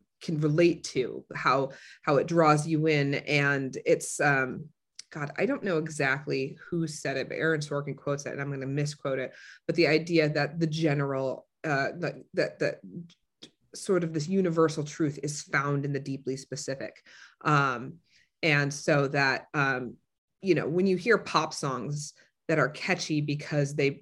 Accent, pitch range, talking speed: American, 145-175 Hz, 170 wpm